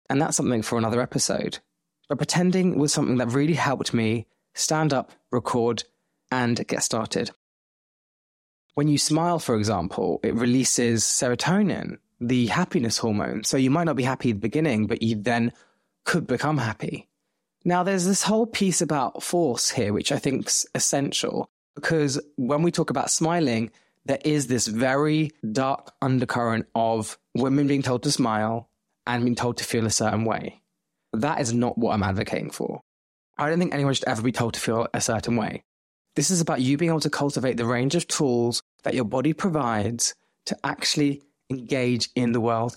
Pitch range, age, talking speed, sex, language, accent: 115-150 Hz, 20-39, 180 wpm, male, English, British